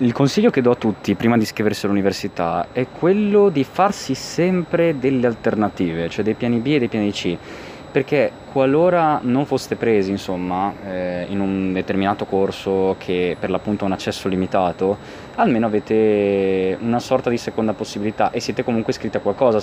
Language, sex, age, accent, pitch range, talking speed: Italian, male, 20-39, native, 95-120 Hz, 170 wpm